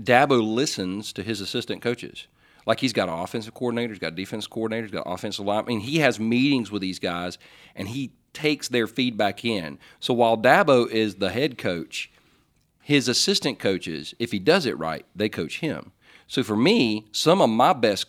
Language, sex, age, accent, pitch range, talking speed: English, male, 40-59, American, 100-125 Hz, 200 wpm